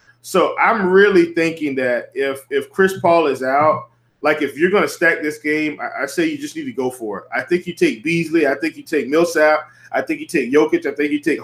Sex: male